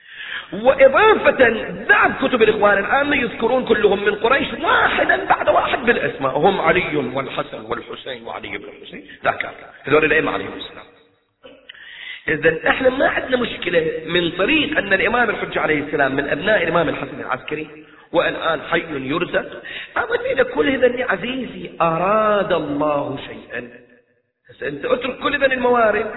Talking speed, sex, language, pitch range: 135 wpm, male, Arabic, 205-275 Hz